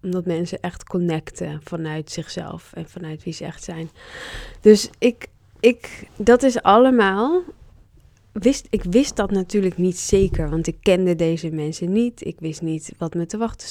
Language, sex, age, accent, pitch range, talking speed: Dutch, female, 20-39, Dutch, 165-195 Hz, 170 wpm